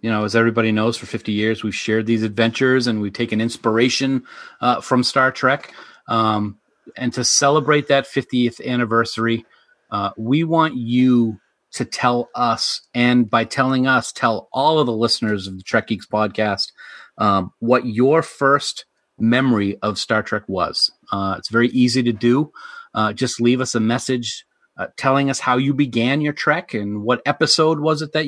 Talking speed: 175 wpm